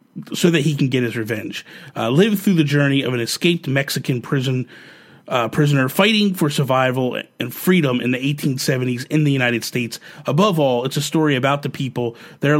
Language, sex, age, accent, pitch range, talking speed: English, male, 30-49, American, 130-160 Hz, 190 wpm